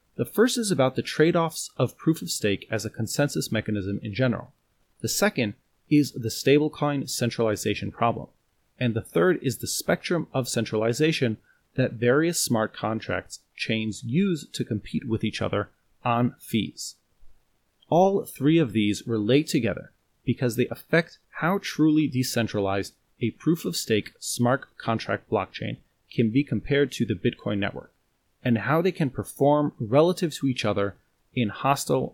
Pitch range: 110-145 Hz